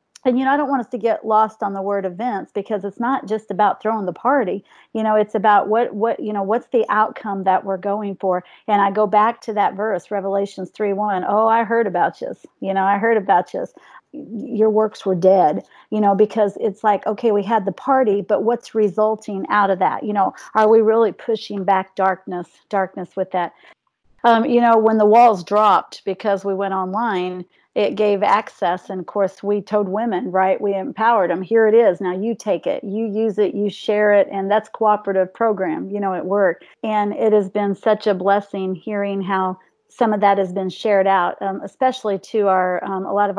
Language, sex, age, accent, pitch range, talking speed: English, female, 40-59, American, 190-220 Hz, 220 wpm